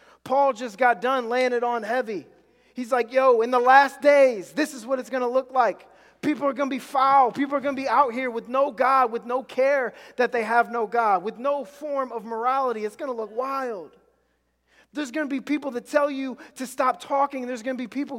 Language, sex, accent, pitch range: English, male, American, 230-280 Hz